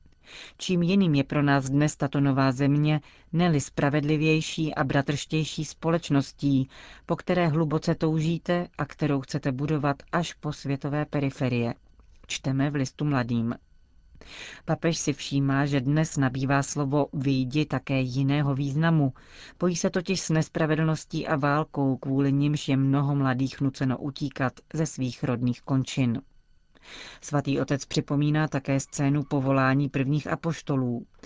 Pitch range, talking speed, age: 135-155 Hz, 130 wpm, 40-59